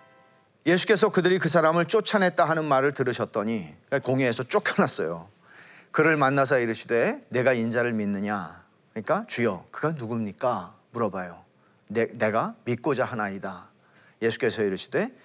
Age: 40-59